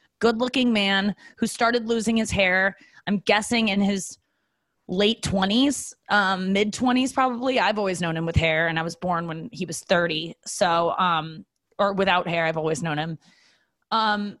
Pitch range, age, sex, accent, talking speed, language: 180-230 Hz, 20-39, female, American, 165 wpm, English